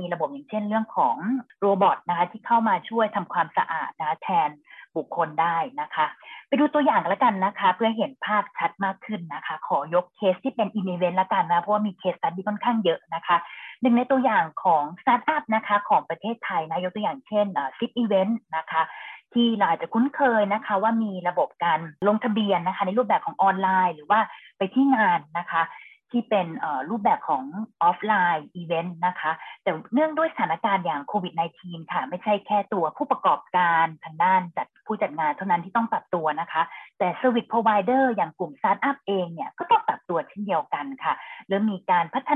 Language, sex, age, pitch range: Thai, female, 30-49, 180-235 Hz